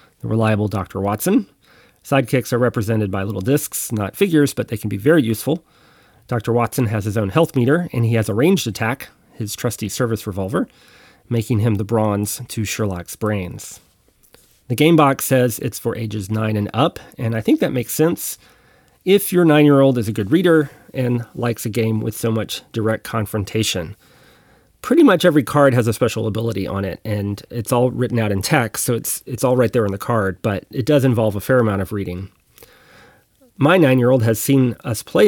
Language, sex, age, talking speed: English, male, 30-49, 195 wpm